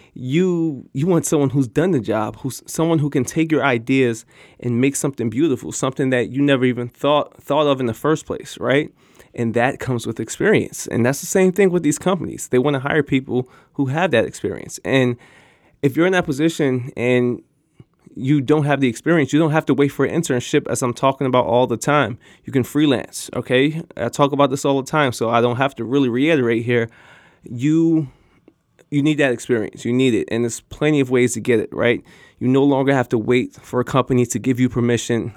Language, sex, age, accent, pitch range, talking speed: English, male, 20-39, American, 120-145 Hz, 220 wpm